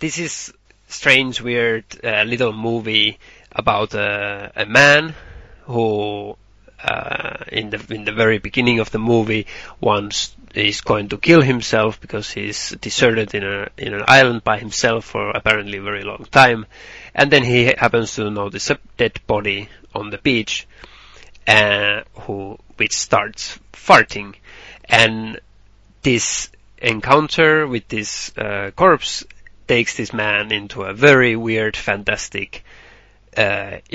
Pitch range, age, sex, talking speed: 105-125 Hz, 30-49, male, 140 wpm